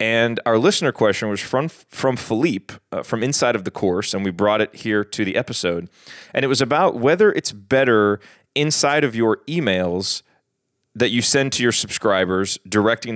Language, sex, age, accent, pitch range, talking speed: English, male, 30-49, American, 100-125 Hz, 180 wpm